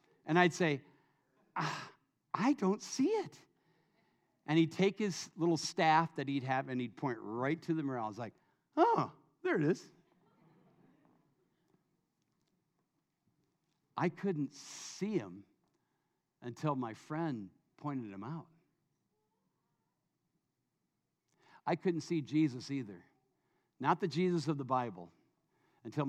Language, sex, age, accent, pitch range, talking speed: English, male, 60-79, American, 140-190 Hz, 120 wpm